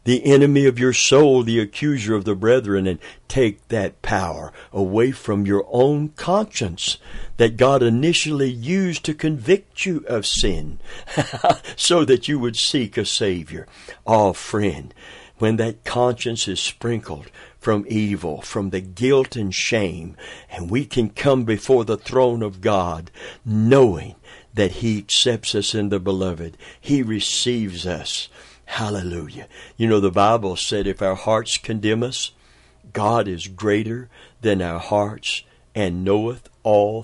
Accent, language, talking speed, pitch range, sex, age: American, English, 145 wpm, 95-125 Hz, male, 60-79